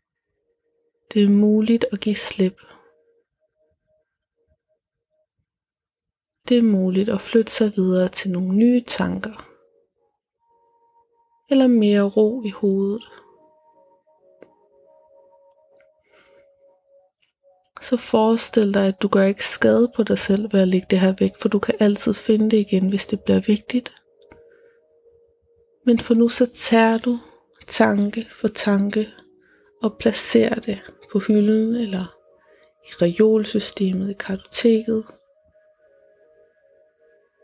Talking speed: 110 wpm